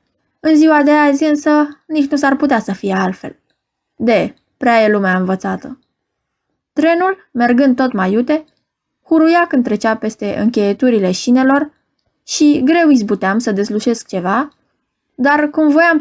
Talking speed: 140 wpm